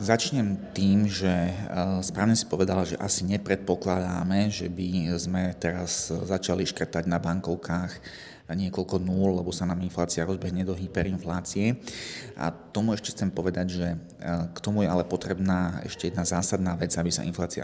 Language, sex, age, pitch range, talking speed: Slovak, male, 30-49, 85-95 Hz, 150 wpm